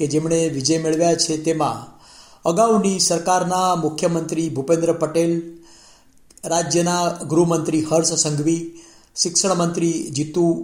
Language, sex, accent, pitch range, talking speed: Gujarati, male, native, 160-175 Hz, 95 wpm